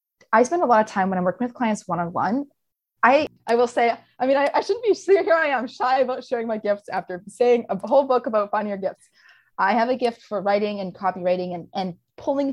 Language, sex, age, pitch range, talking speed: English, female, 20-39, 185-230 Hz, 245 wpm